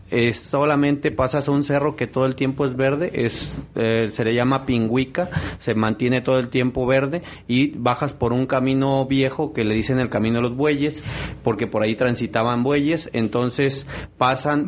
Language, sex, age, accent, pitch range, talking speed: Spanish, male, 30-49, Mexican, 120-145 Hz, 185 wpm